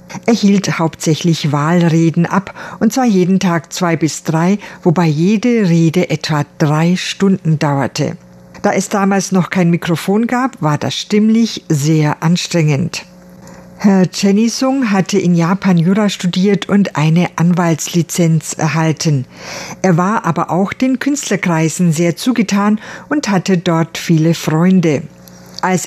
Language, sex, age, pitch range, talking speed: German, female, 50-69, 165-195 Hz, 130 wpm